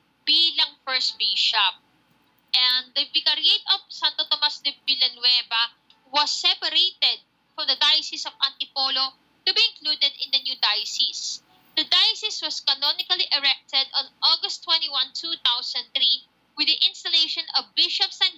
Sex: female